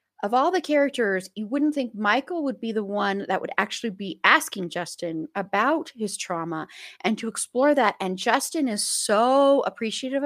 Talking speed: 175 wpm